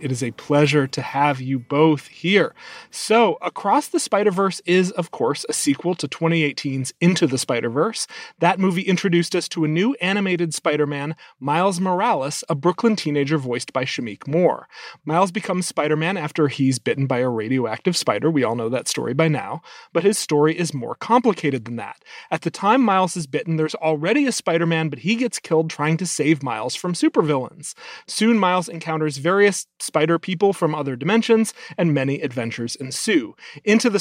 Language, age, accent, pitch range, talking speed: English, 30-49, American, 145-185 Hz, 180 wpm